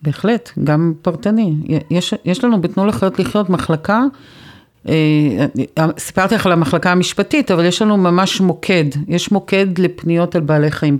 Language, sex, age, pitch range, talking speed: Hebrew, female, 50-69, 150-195 Hz, 145 wpm